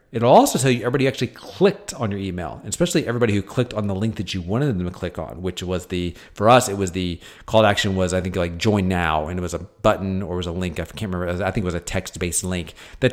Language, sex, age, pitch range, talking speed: English, male, 40-59, 95-130 Hz, 285 wpm